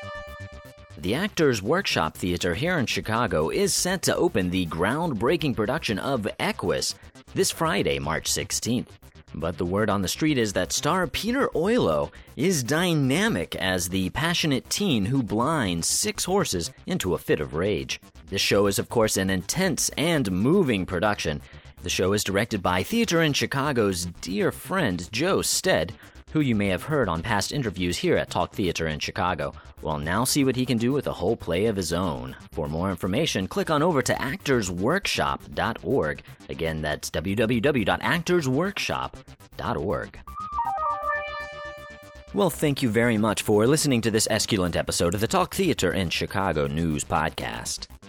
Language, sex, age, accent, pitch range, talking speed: English, male, 30-49, American, 85-130 Hz, 155 wpm